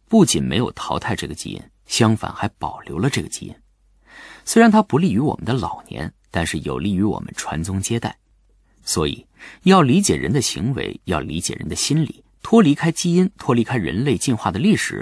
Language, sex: Chinese, male